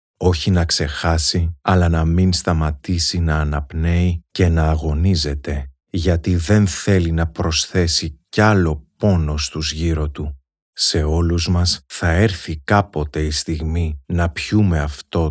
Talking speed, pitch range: 135 wpm, 80-90 Hz